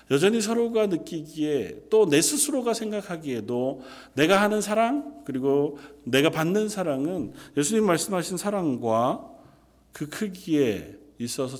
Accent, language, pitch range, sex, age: native, Korean, 110-160 Hz, male, 40-59